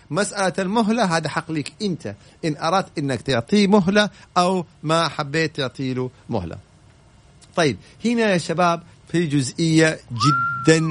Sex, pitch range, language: male, 130-175 Hz, Arabic